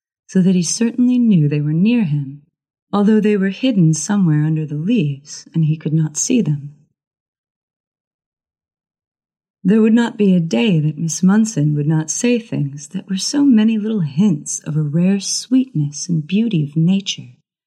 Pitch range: 150-205 Hz